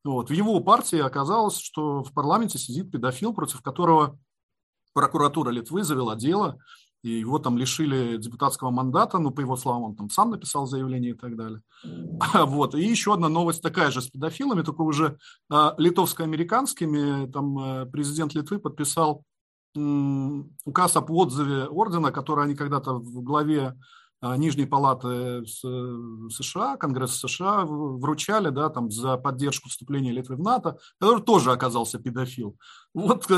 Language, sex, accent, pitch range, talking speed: Russian, male, native, 130-180 Hz, 135 wpm